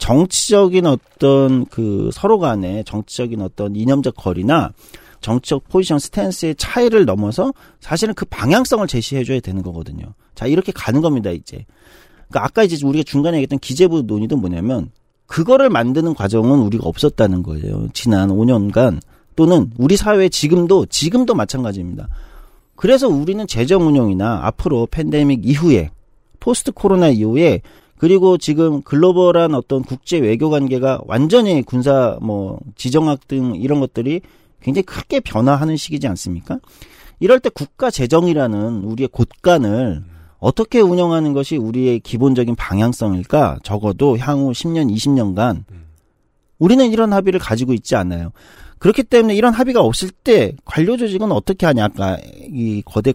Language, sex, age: Korean, male, 40-59